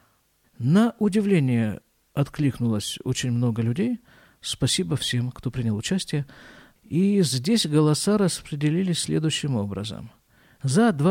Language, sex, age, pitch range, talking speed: Russian, male, 50-69, 130-180 Hz, 95 wpm